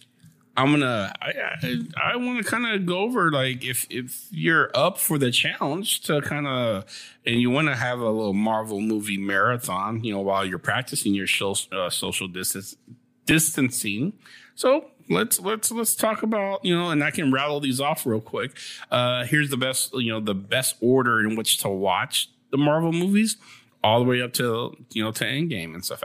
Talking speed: 205 wpm